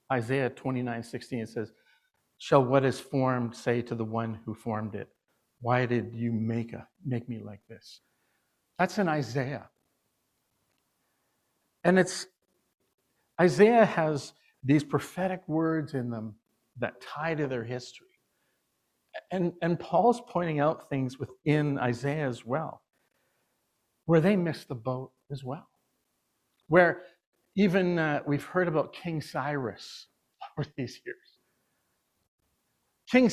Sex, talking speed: male, 130 wpm